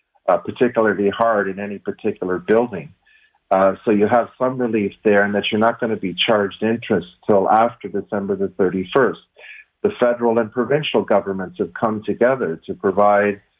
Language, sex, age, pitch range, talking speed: English, male, 40-59, 100-120 Hz, 170 wpm